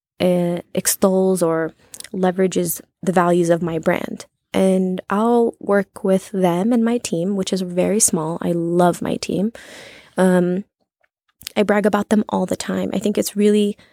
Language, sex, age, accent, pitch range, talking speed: English, female, 20-39, American, 180-205 Hz, 160 wpm